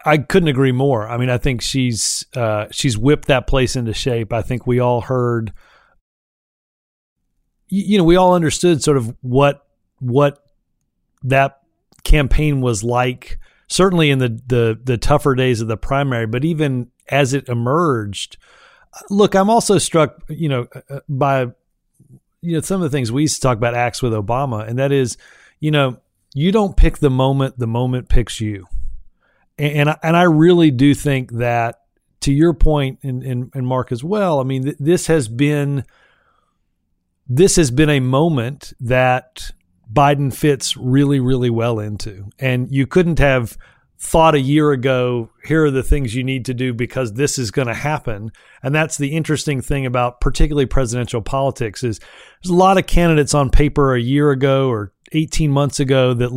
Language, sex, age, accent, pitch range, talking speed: English, male, 40-59, American, 120-150 Hz, 170 wpm